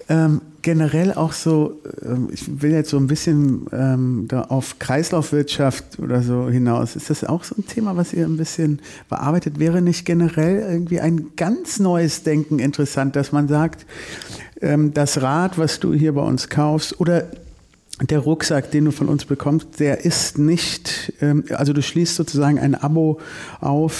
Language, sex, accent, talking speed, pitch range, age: German, male, German, 170 wpm, 135-160 Hz, 50-69